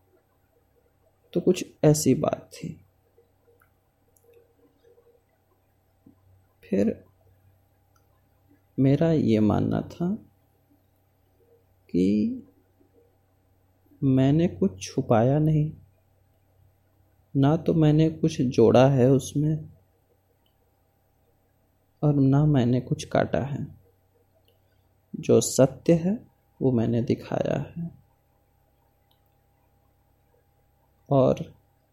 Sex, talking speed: male, 70 wpm